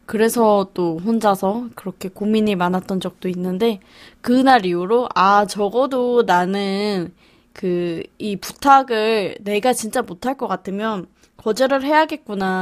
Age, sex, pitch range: 20-39, female, 190-235 Hz